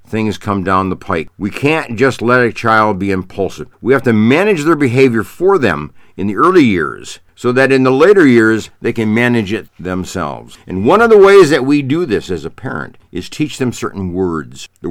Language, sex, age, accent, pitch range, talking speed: English, male, 60-79, American, 90-130 Hz, 215 wpm